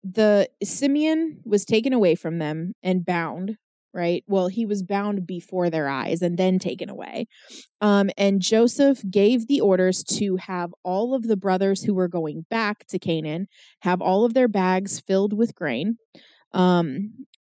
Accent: American